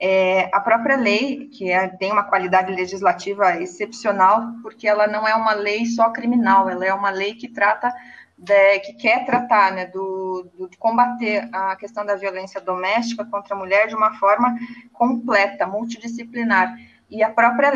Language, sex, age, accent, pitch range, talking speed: Portuguese, female, 20-39, Brazilian, 200-240 Hz, 160 wpm